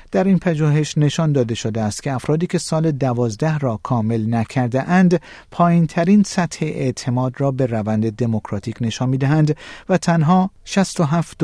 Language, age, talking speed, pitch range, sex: Persian, 50-69, 155 wpm, 120-165 Hz, male